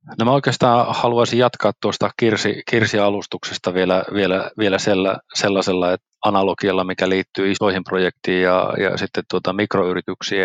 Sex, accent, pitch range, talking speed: male, native, 95-110 Hz, 130 wpm